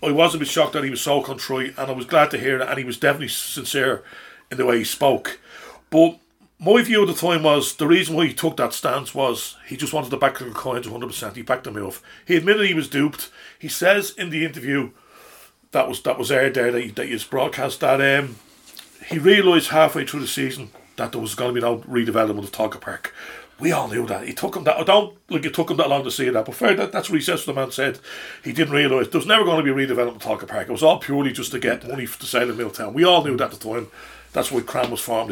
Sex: male